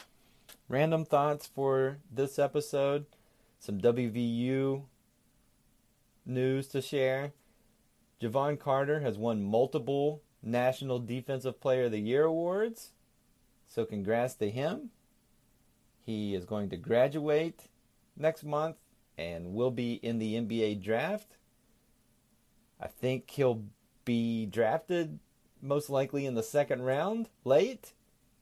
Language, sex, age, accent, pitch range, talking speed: English, male, 30-49, American, 115-150 Hz, 110 wpm